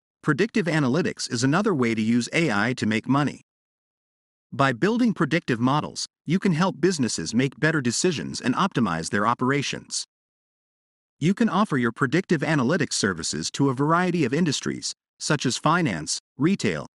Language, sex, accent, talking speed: English, male, American, 150 wpm